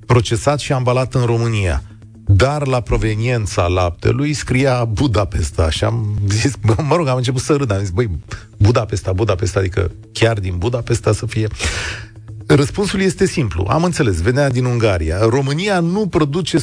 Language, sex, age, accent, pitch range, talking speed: Romanian, male, 40-59, native, 105-140 Hz, 155 wpm